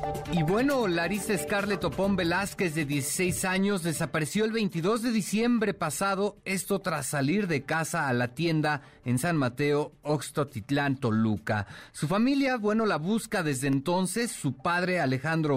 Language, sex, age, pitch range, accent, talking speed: Spanish, male, 40-59, 130-180 Hz, Mexican, 145 wpm